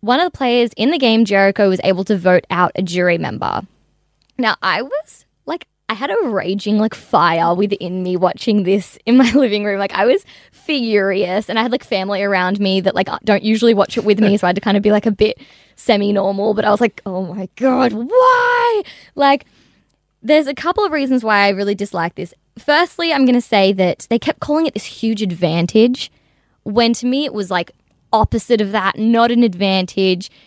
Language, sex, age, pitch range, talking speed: English, female, 10-29, 190-240 Hz, 215 wpm